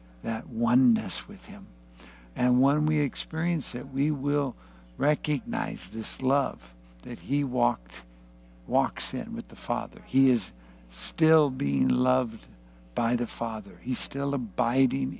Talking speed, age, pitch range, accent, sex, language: 130 wpm, 60-79, 95-145 Hz, American, male, English